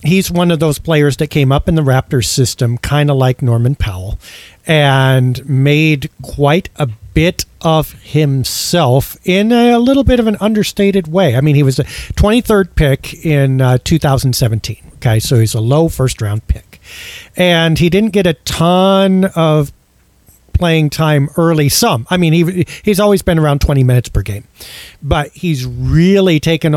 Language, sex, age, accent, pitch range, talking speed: English, male, 40-59, American, 130-170 Hz, 170 wpm